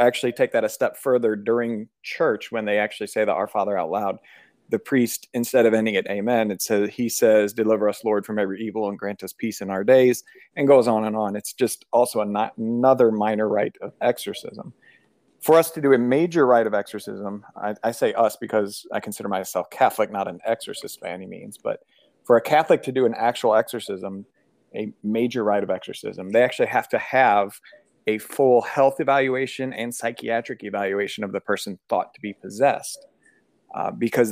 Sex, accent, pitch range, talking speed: male, American, 105-125 Hz, 195 wpm